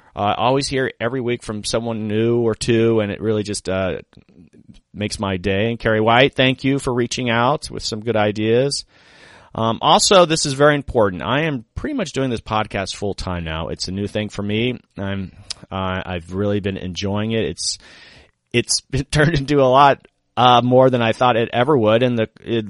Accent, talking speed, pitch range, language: American, 210 wpm, 100-125 Hz, English